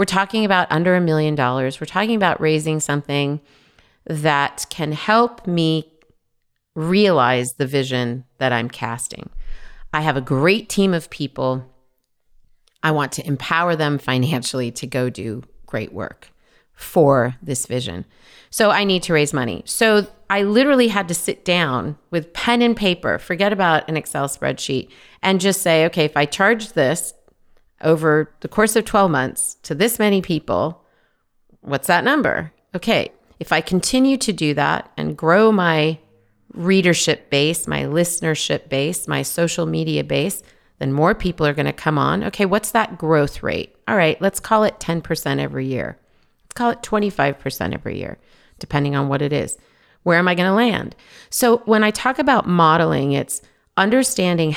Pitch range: 140-195 Hz